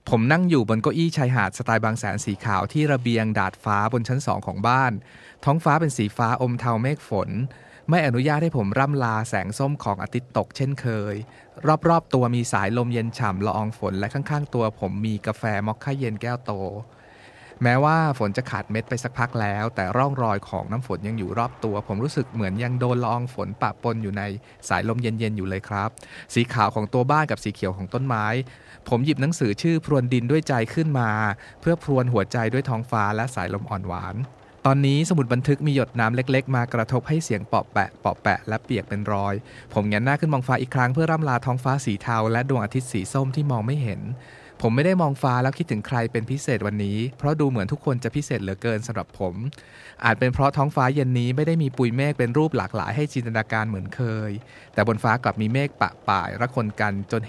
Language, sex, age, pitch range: Thai, male, 20-39, 105-130 Hz